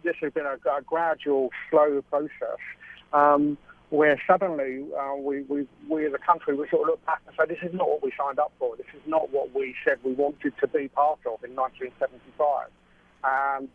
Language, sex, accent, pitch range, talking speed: English, male, British, 135-160 Hz, 210 wpm